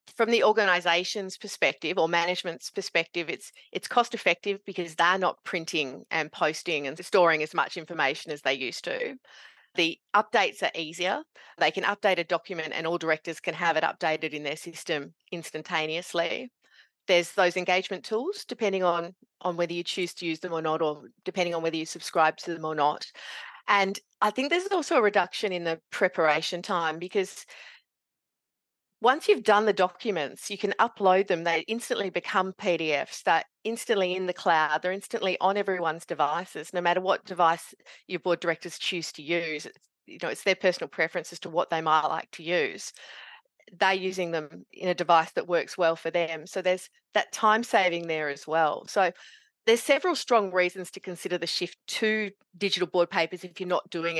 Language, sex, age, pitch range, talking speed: English, female, 30-49, 165-200 Hz, 185 wpm